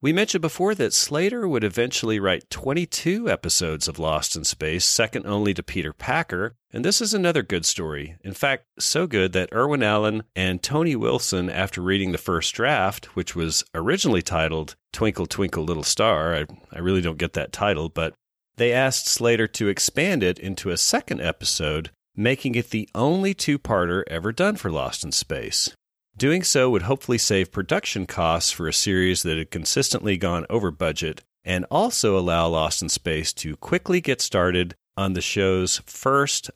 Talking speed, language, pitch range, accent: 175 wpm, English, 90-120 Hz, American